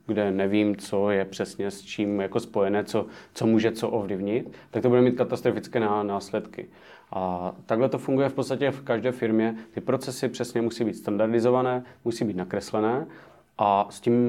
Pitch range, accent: 105-120 Hz, native